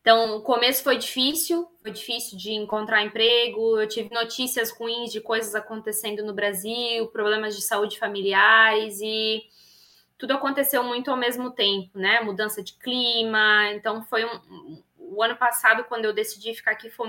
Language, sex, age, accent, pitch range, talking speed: Portuguese, female, 10-29, Brazilian, 210-245 Hz, 160 wpm